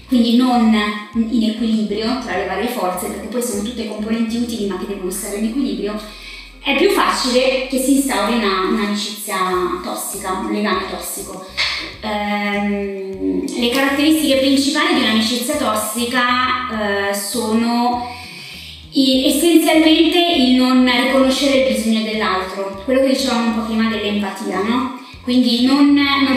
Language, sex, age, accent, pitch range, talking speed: Italian, female, 20-39, native, 205-255 Hz, 125 wpm